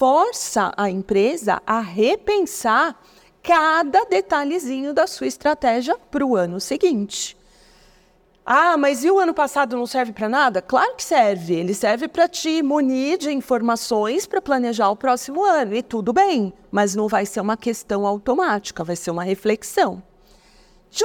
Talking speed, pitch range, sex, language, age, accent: 155 wpm, 195-295 Hz, female, Portuguese, 40-59, Brazilian